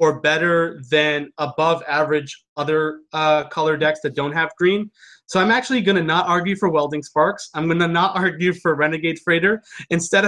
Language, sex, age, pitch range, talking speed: English, male, 30-49, 155-205 Hz, 180 wpm